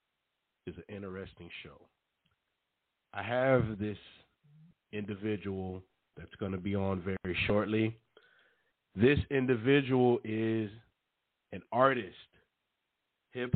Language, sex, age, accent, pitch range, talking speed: English, male, 40-59, American, 105-125 Hz, 95 wpm